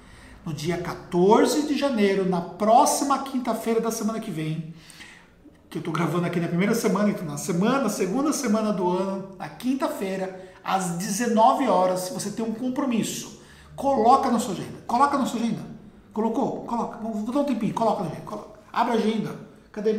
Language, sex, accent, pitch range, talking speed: Portuguese, male, Brazilian, 180-230 Hz, 175 wpm